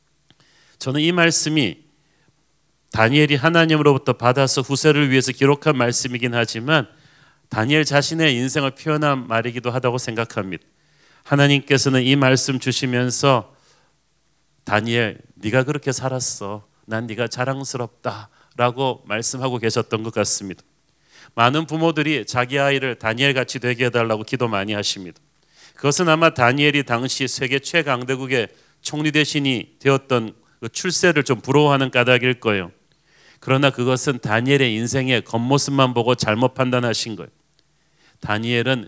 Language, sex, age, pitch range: Korean, male, 40-59, 120-150 Hz